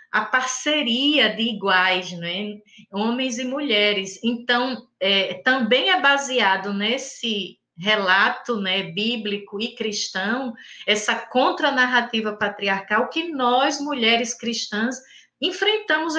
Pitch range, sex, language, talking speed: 225-290 Hz, female, Portuguese, 100 wpm